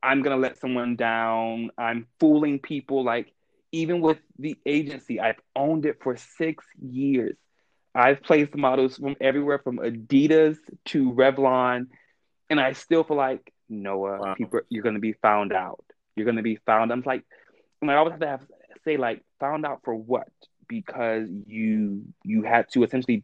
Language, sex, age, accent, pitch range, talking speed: English, male, 20-39, American, 120-150 Hz, 170 wpm